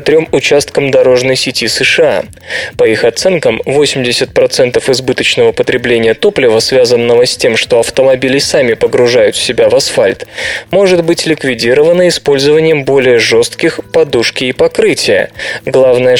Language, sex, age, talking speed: Russian, male, 20-39, 120 wpm